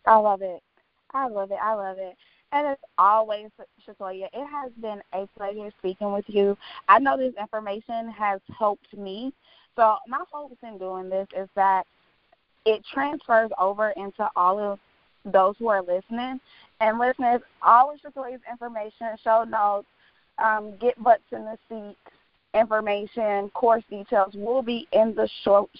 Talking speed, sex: 160 wpm, female